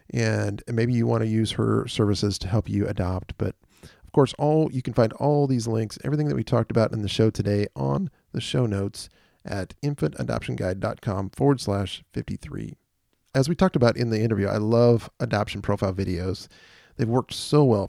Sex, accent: male, American